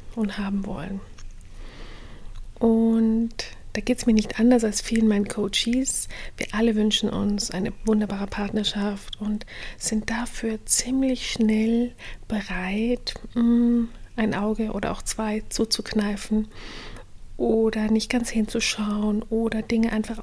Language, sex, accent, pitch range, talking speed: German, female, German, 205-235 Hz, 120 wpm